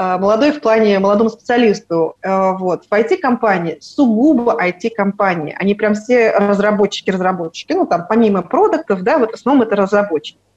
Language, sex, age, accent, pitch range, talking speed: Russian, female, 30-49, native, 185-230 Hz, 125 wpm